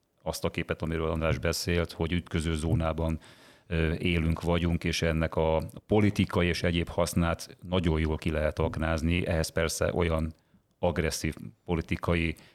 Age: 30-49